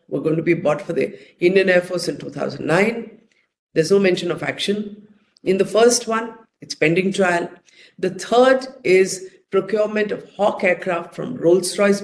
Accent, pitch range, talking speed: Indian, 170-210 Hz, 165 wpm